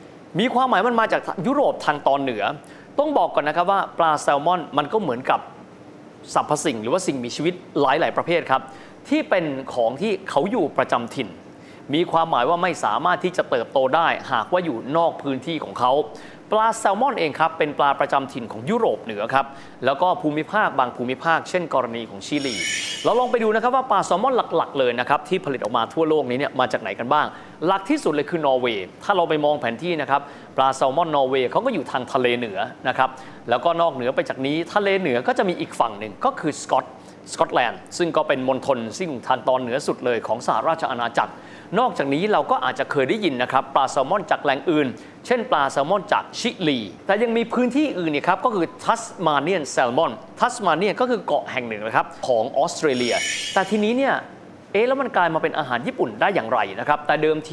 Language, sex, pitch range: Thai, male, 140-200 Hz